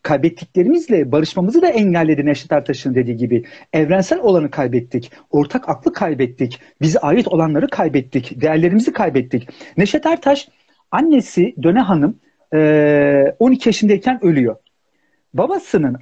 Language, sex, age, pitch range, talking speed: Turkish, male, 50-69, 145-245 Hz, 110 wpm